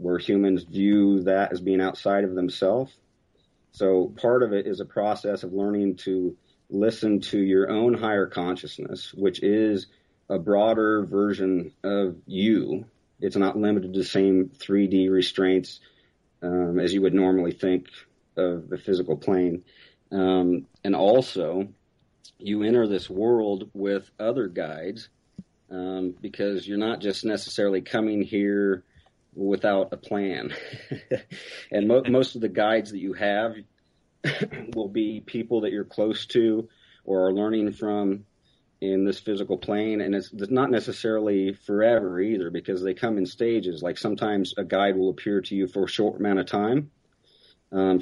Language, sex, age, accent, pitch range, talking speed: English, male, 40-59, American, 95-105 Hz, 150 wpm